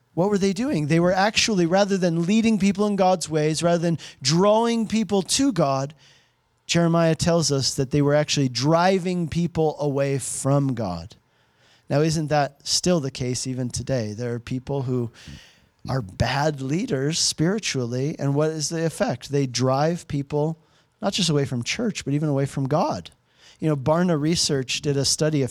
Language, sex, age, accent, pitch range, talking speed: English, male, 40-59, American, 140-175 Hz, 175 wpm